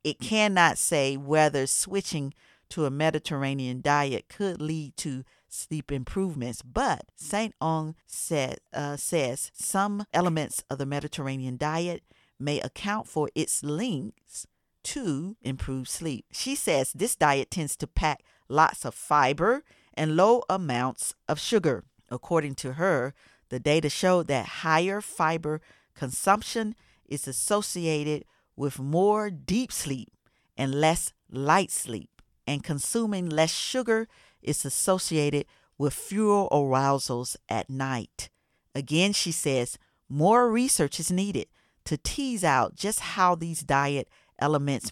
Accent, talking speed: American, 125 wpm